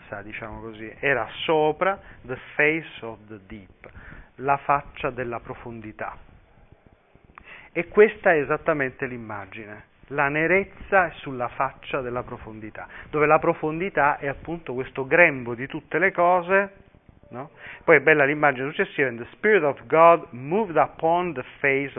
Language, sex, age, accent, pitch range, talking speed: Italian, male, 40-59, native, 120-165 Hz, 135 wpm